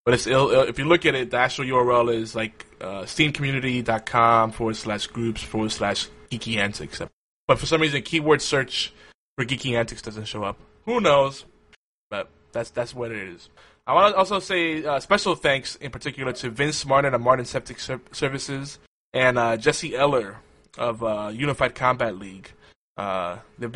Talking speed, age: 180 wpm, 20-39